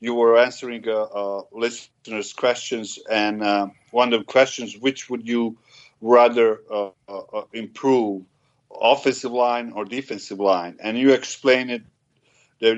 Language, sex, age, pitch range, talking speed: English, male, 50-69, 110-125 Hz, 145 wpm